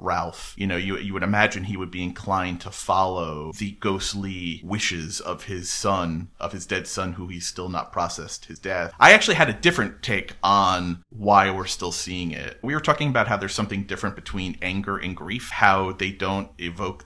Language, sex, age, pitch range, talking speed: English, male, 30-49, 85-105 Hz, 205 wpm